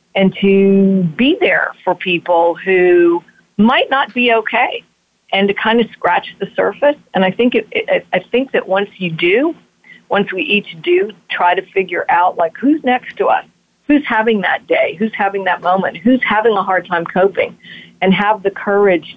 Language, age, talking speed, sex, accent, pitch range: English, 50-69, 190 wpm, female, American, 175-205 Hz